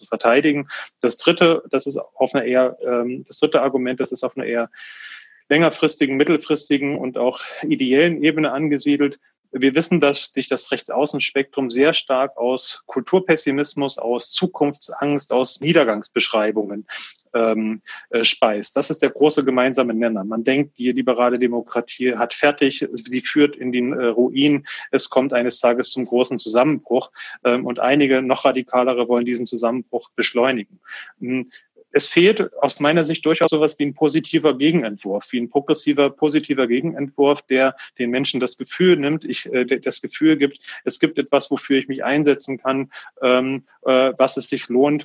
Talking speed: 150 wpm